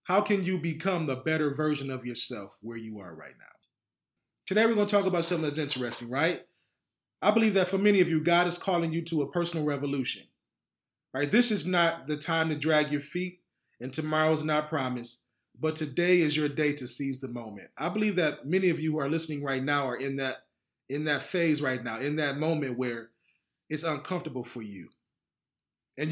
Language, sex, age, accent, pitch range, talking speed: English, male, 20-39, American, 140-180 Hz, 205 wpm